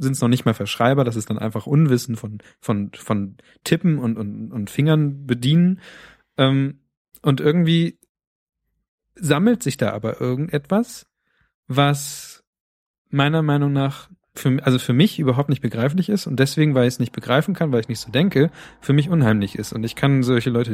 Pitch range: 115-145 Hz